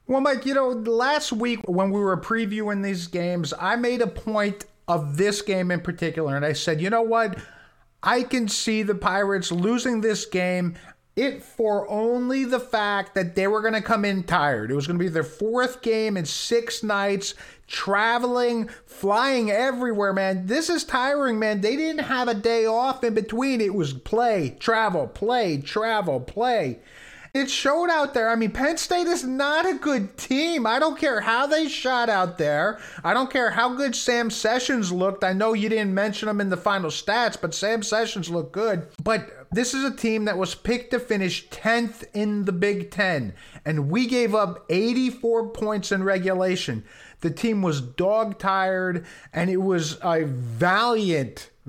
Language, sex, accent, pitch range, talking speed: English, male, American, 185-235 Hz, 180 wpm